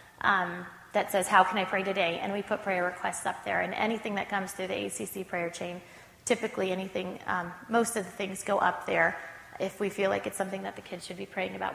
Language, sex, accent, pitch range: English, female, American, 185-210 Hz